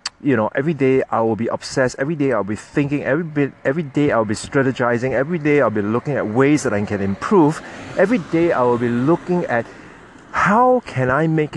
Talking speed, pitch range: 220 wpm, 110-135 Hz